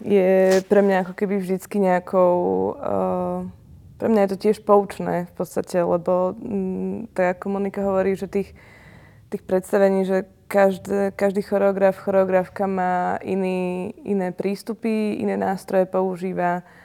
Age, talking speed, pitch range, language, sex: 20-39, 130 wpm, 175-195 Hz, Slovak, female